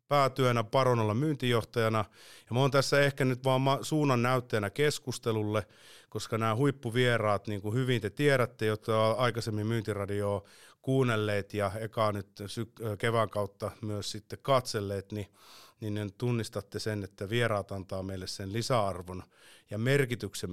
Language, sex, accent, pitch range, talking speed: Finnish, male, native, 105-135 Hz, 135 wpm